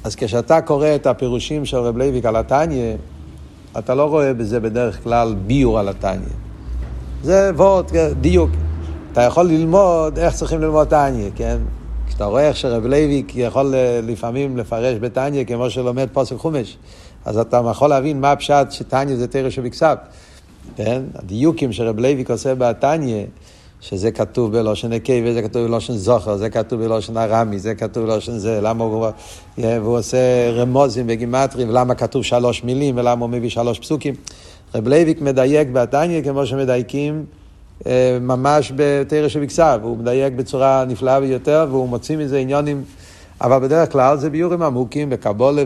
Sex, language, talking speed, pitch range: male, Hebrew, 150 wpm, 115-140 Hz